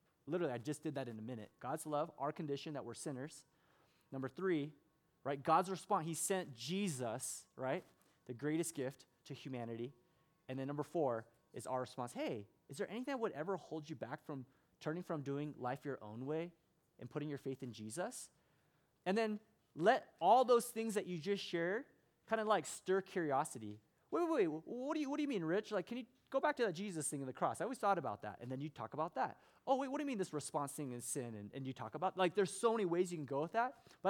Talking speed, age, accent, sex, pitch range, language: 240 wpm, 20-39, American, male, 140-180 Hz, English